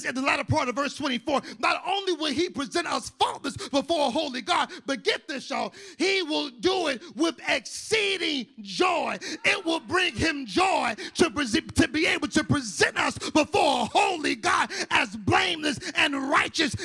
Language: English